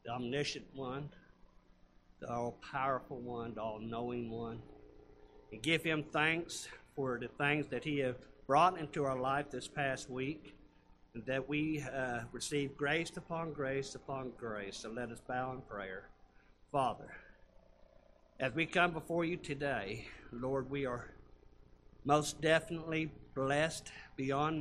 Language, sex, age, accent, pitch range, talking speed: English, male, 50-69, American, 115-150 Hz, 135 wpm